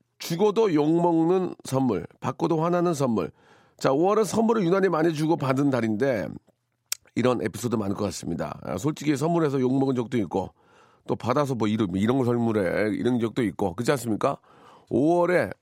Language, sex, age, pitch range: Korean, male, 40-59, 115-170 Hz